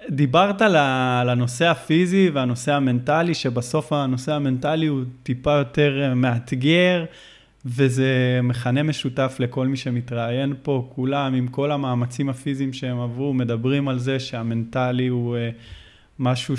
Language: Hebrew